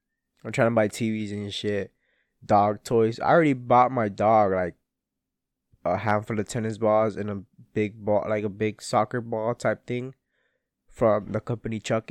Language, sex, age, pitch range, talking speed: English, male, 20-39, 105-120 Hz, 175 wpm